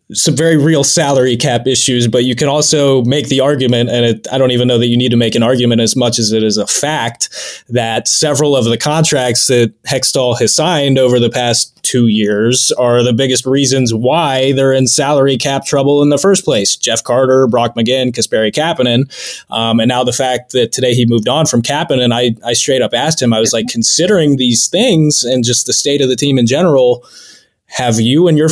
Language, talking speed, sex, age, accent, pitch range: English, 220 wpm, male, 20-39, American, 120-145 Hz